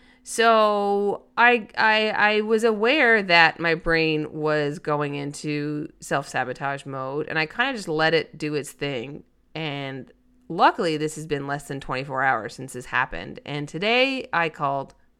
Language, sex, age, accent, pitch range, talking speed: English, female, 30-49, American, 155-245 Hz, 160 wpm